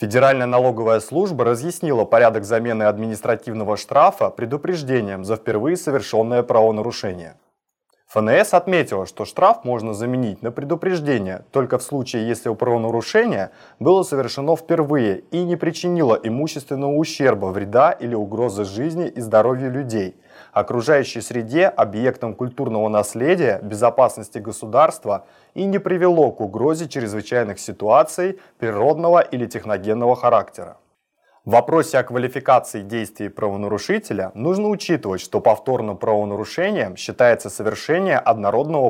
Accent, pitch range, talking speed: native, 110-150 Hz, 115 wpm